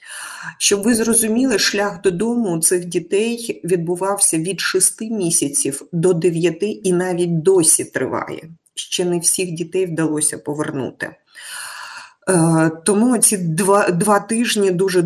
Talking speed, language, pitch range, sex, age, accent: 120 wpm, Ukrainian, 155-190 Hz, female, 30-49, native